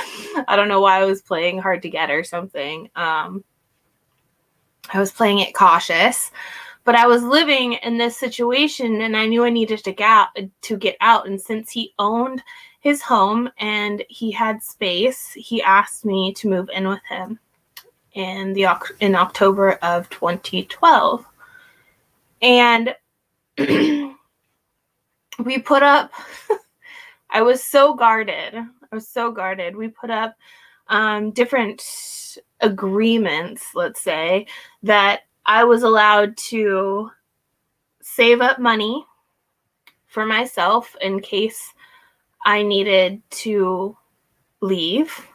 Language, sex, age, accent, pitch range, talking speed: English, female, 20-39, American, 195-240 Hz, 125 wpm